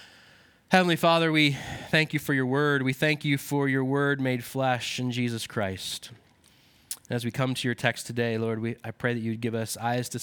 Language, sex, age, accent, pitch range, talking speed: English, male, 20-39, American, 115-155 Hz, 205 wpm